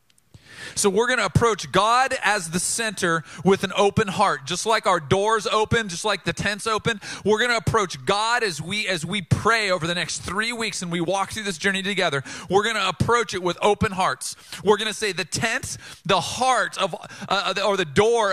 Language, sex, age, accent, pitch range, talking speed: English, male, 40-59, American, 170-215 Hz, 205 wpm